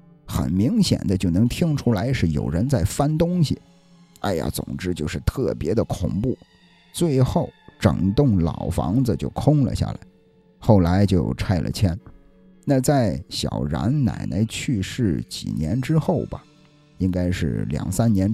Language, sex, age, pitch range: Chinese, male, 50-69, 90-135 Hz